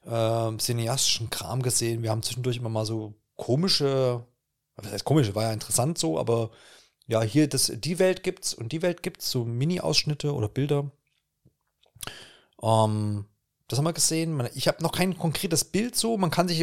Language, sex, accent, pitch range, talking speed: German, male, German, 115-155 Hz, 175 wpm